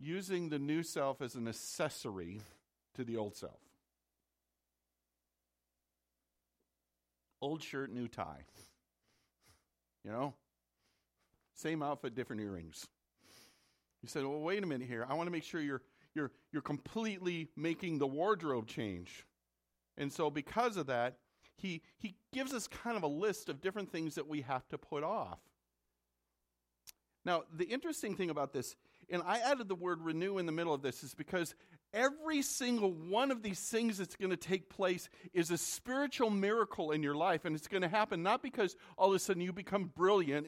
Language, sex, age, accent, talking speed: English, male, 50-69, American, 165 wpm